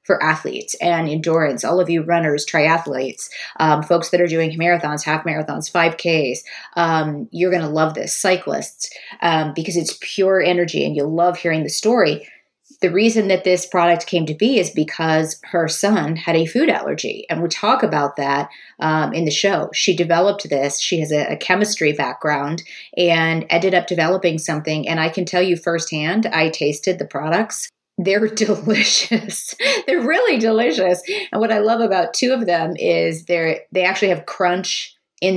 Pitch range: 160-185 Hz